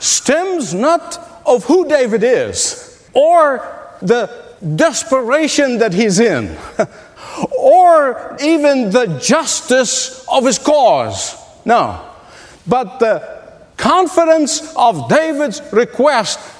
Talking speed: 95 wpm